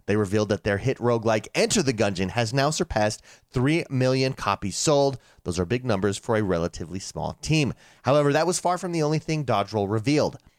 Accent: American